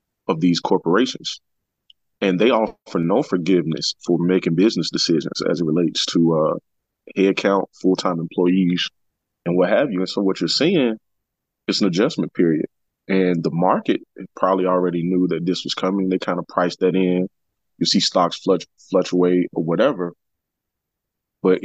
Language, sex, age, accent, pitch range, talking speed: English, male, 20-39, American, 85-95 Hz, 160 wpm